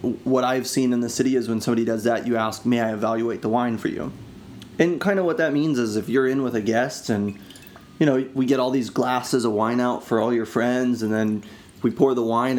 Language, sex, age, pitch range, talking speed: English, male, 30-49, 110-125 Hz, 255 wpm